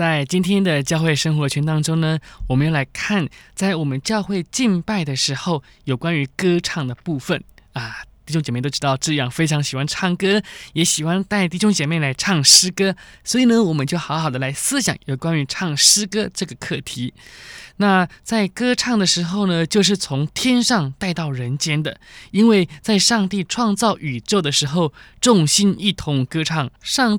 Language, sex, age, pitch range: Chinese, male, 20-39, 150-200 Hz